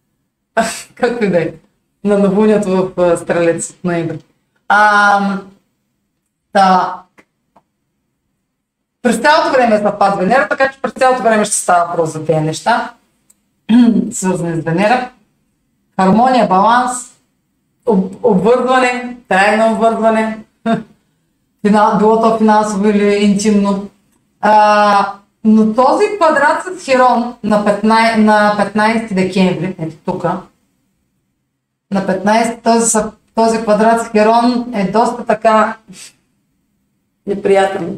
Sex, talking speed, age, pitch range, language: female, 105 wpm, 30-49, 180-225 Hz, Bulgarian